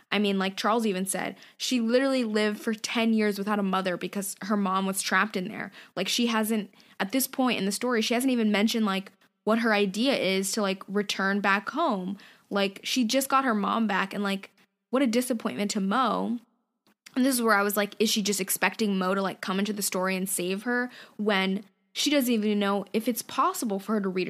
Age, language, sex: 10-29, English, female